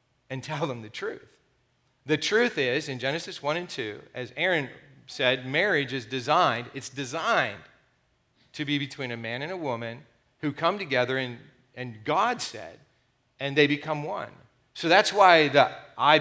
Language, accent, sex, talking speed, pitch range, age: English, American, male, 165 wpm, 130-160 Hz, 40-59